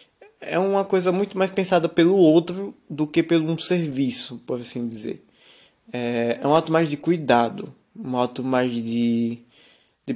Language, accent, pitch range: Portuguese, Brazilian, 125-190 Hz